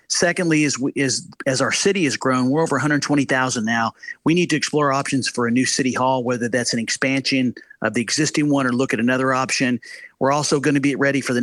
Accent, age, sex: American, 40-59, male